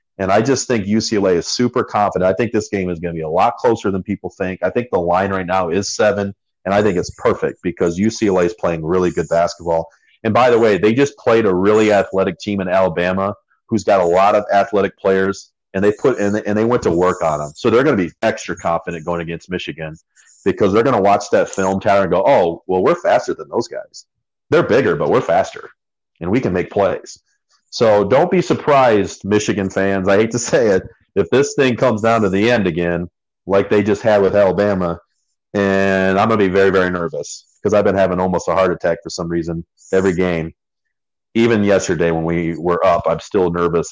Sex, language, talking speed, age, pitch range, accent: male, English, 230 wpm, 40-59, 90-105 Hz, American